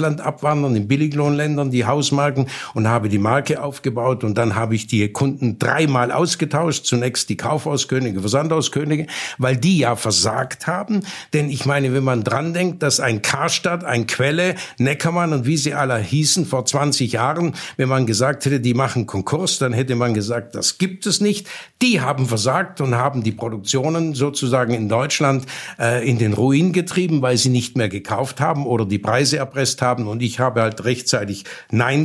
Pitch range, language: 115-150 Hz, German